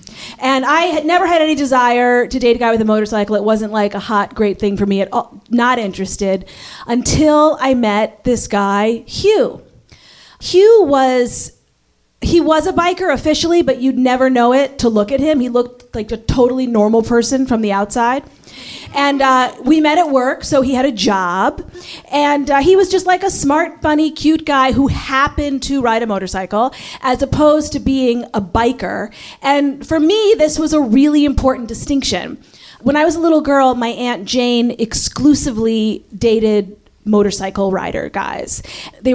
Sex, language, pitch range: female, English, 210-275 Hz